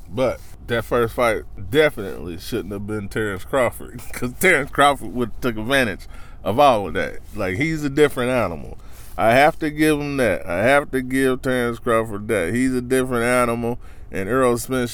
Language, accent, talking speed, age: English, American, 180 wpm, 20-39